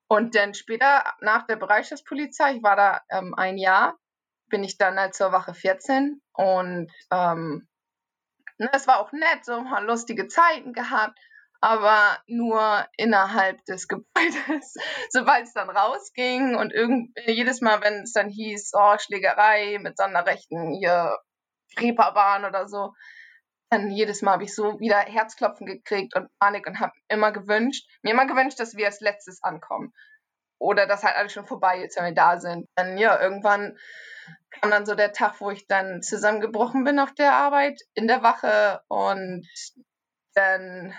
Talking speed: 160 wpm